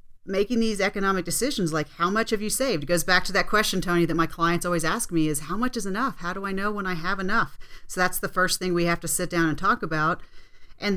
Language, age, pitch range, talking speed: English, 40-59, 170-210 Hz, 275 wpm